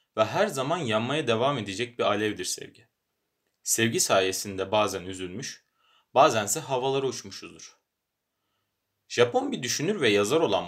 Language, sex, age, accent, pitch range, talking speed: Turkish, male, 30-49, native, 100-130 Hz, 125 wpm